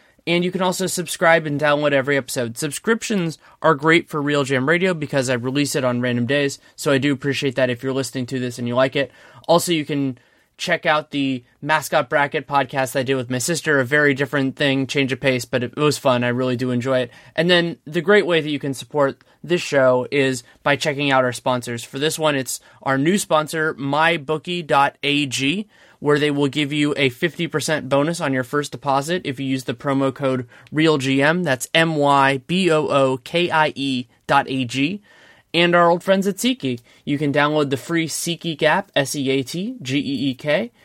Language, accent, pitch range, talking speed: English, American, 130-160 Hz, 190 wpm